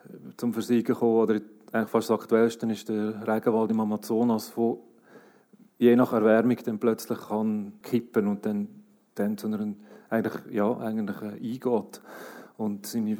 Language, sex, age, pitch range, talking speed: German, male, 40-59, 110-120 Hz, 140 wpm